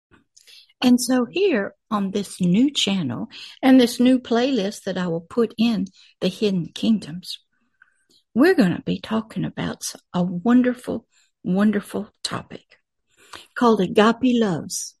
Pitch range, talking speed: 190-235 Hz, 130 wpm